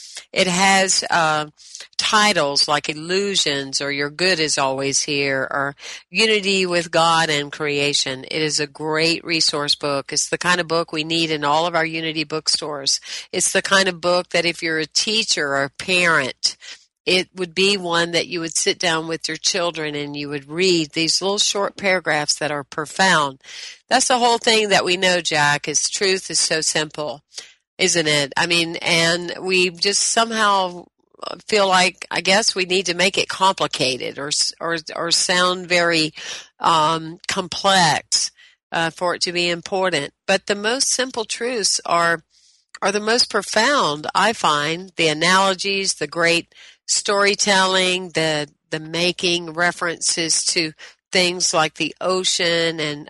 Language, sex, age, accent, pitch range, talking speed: English, female, 50-69, American, 155-190 Hz, 165 wpm